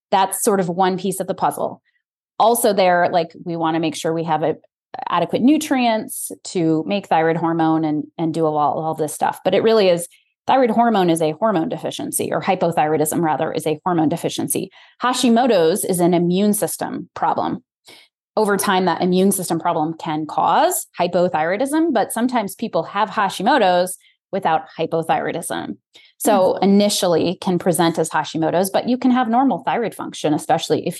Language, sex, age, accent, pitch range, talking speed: English, female, 20-39, American, 165-210 Hz, 165 wpm